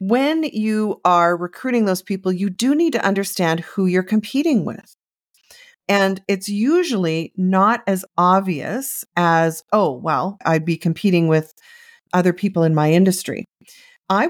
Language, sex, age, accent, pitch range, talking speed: English, female, 40-59, American, 170-235 Hz, 145 wpm